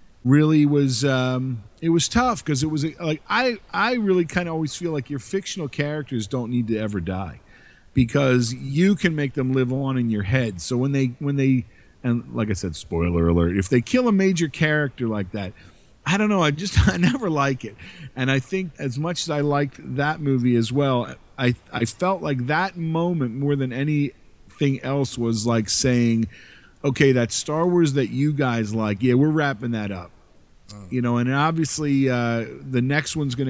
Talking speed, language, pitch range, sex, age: 200 wpm, English, 120-150 Hz, male, 40-59